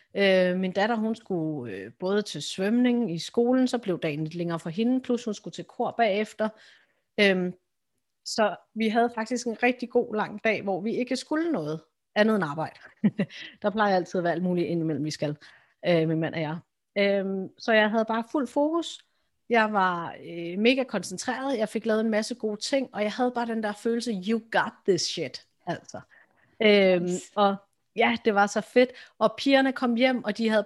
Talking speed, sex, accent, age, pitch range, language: 190 wpm, female, native, 30-49, 185-235 Hz, Danish